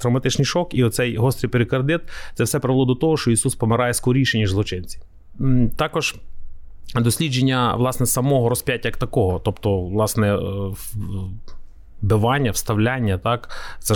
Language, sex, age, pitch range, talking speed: Ukrainian, male, 30-49, 110-130 Hz, 130 wpm